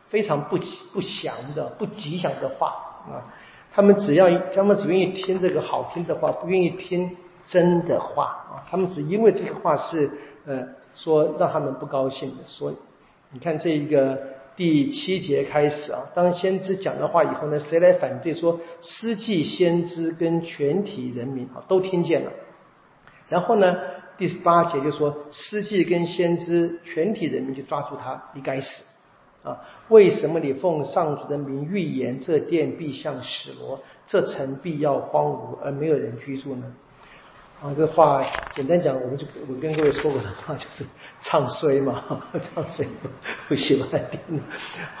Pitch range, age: 140-185 Hz, 50-69